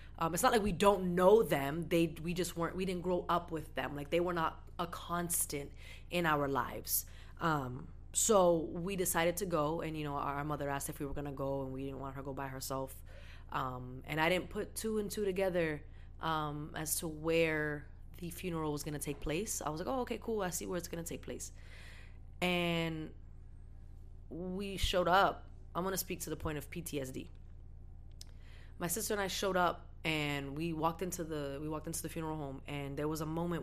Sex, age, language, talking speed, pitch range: female, 20-39, English, 220 wpm, 135-170 Hz